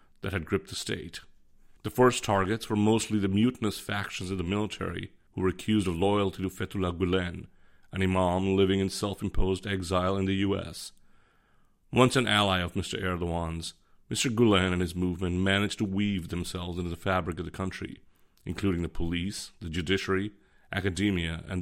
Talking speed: 170 wpm